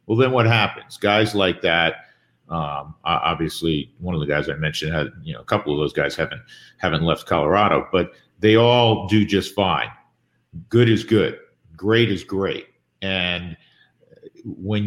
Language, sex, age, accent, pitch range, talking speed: English, male, 50-69, American, 95-120 Hz, 165 wpm